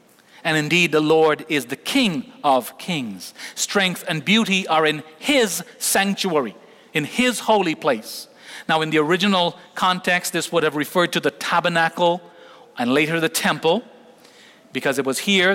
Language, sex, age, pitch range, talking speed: English, male, 40-59, 155-195 Hz, 155 wpm